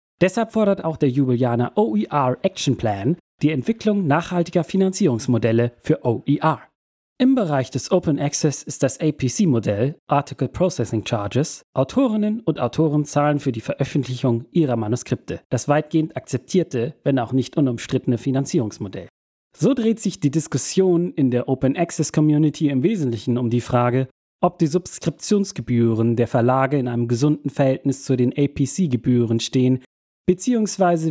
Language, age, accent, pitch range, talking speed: German, 40-59, German, 125-165 Hz, 135 wpm